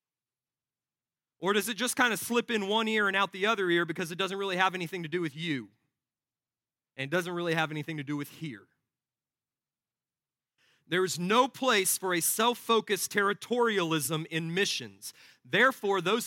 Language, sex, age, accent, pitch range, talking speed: English, male, 40-59, American, 135-200 Hz, 170 wpm